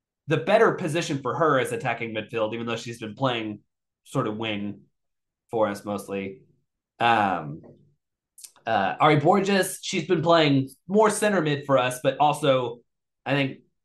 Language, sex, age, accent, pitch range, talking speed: English, male, 20-39, American, 130-170 Hz, 150 wpm